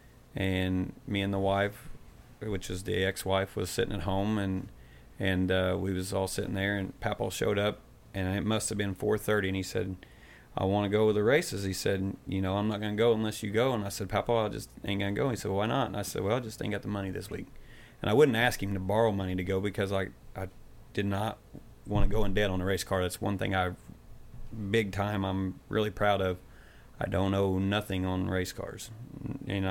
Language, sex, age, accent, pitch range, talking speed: English, male, 30-49, American, 95-105 Hz, 245 wpm